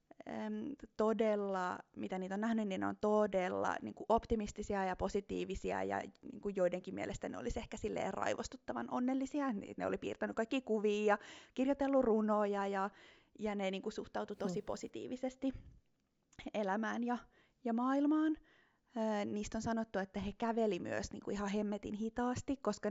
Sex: female